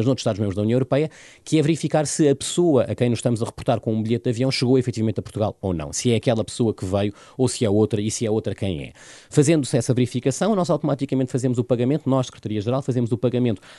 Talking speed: 250 wpm